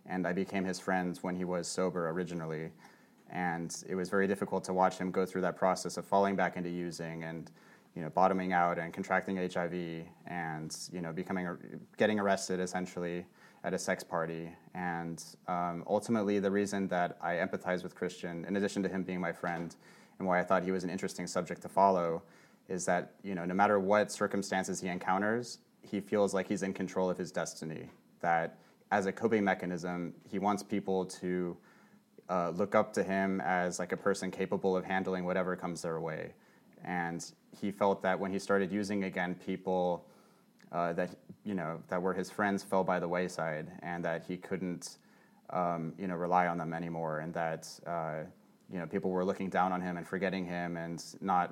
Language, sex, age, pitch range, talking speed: English, male, 30-49, 85-95 Hz, 195 wpm